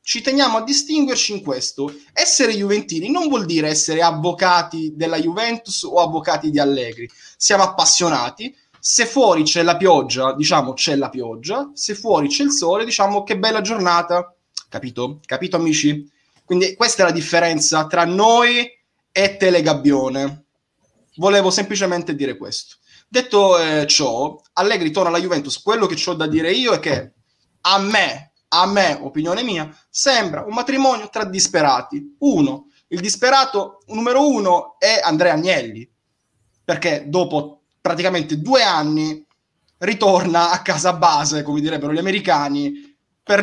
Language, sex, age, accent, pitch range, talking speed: Italian, male, 20-39, native, 155-215 Hz, 140 wpm